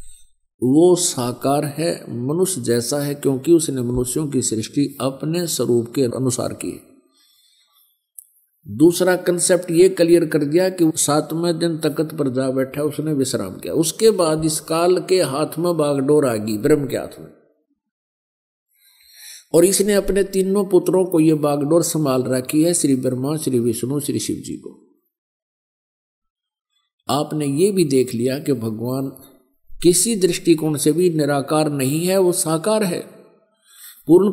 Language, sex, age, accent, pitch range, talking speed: Hindi, male, 50-69, native, 135-180 Hz, 145 wpm